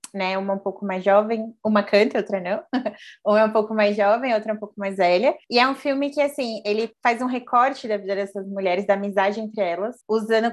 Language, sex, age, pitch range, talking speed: Portuguese, female, 20-39, 195-230 Hz, 235 wpm